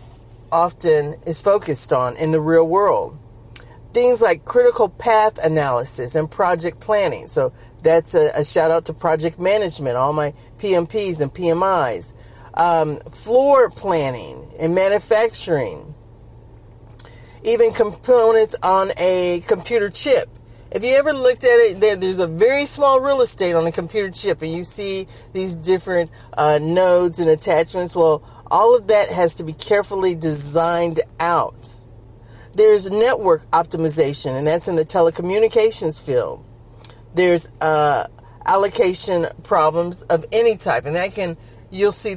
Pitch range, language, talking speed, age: 150-205 Hz, English, 140 wpm, 40-59